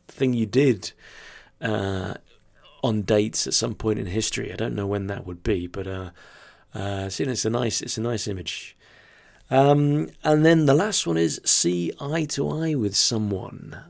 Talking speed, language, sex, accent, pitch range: 180 wpm, English, male, British, 95-120 Hz